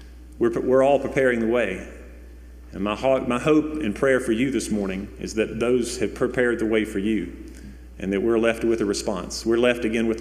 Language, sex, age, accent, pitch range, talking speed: English, male, 40-59, American, 95-120 Hz, 205 wpm